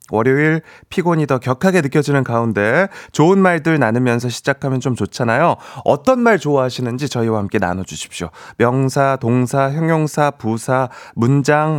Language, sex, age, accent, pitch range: Korean, male, 30-49, native, 115-165 Hz